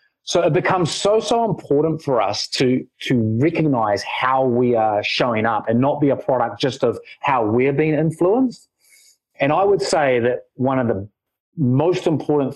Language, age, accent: English, 30-49, Australian